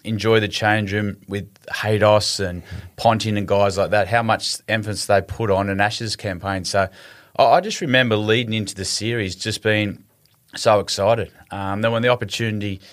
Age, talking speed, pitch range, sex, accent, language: 30-49, 175 wpm, 100-125 Hz, male, Australian, English